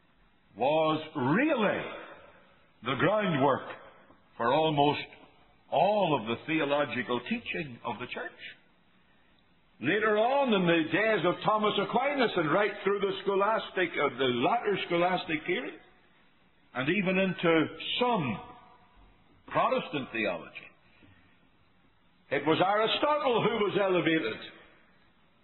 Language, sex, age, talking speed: English, male, 60-79, 105 wpm